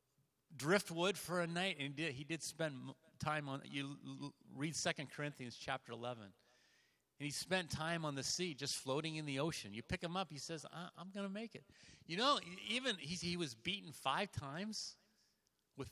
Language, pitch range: English, 120-170 Hz